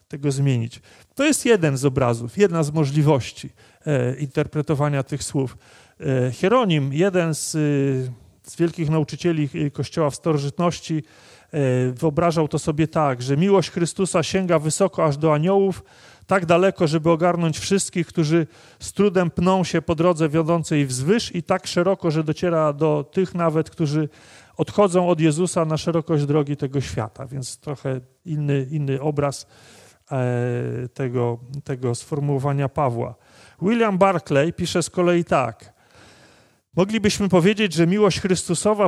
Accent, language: native, Polish